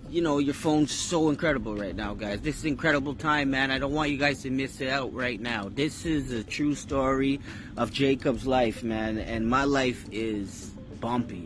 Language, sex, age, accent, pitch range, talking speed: English, male, 30-49, American, 115-145 Hz, 205 wpm